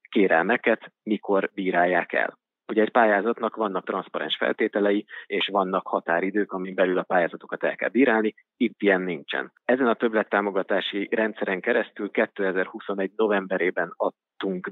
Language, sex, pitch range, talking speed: Hungarian, male, 95-110 Hz, 125 wpm